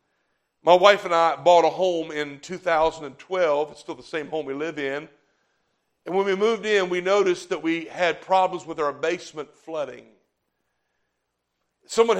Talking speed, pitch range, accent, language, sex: 160 wpm, 160-210 Hz, American, English, male